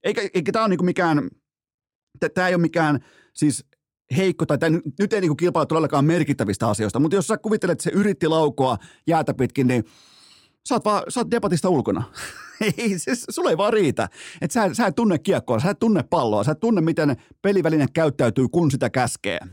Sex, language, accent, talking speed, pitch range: male, Finnish, native, 180 wpm, 120-170 Hz